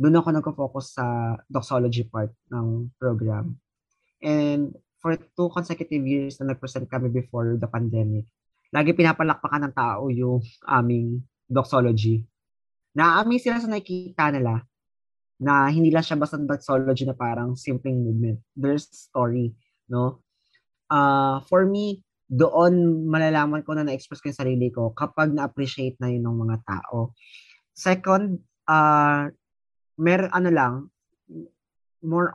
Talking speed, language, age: 130 wpm, Filipino, 20-39